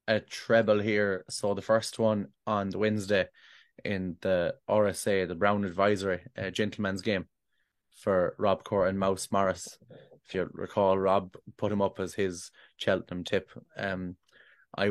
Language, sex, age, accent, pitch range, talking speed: English, male, 20-39, Irish, 95-110 Hz, 155 wpm